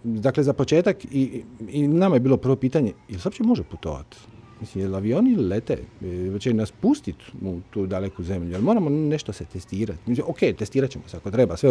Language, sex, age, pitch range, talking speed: Croatian, male, 40-59, 110-145 Hz, 215 wpm